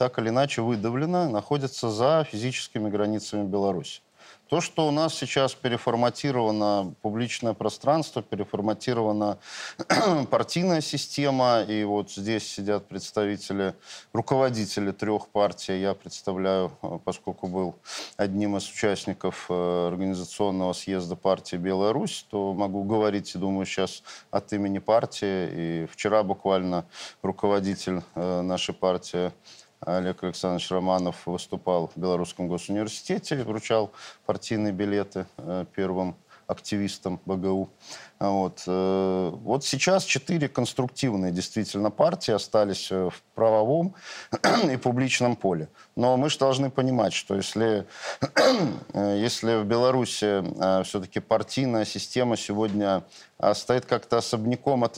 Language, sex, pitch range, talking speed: Russian, male, 95-120 Hz, 105 wpm